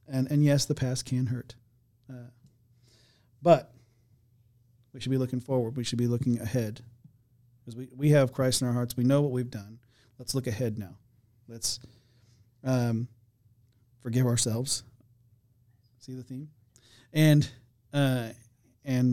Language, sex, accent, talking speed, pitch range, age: English, male, American, 145 wpm, 115-135 Hz, 40-59